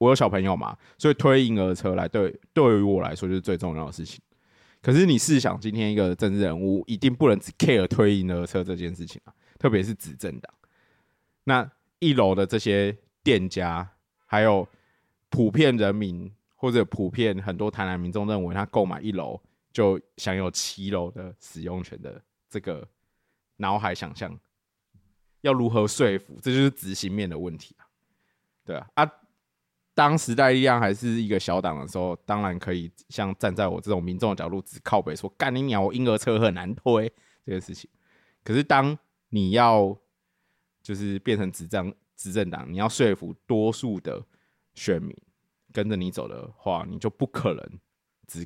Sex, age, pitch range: male, 20-39, 95-115 Hz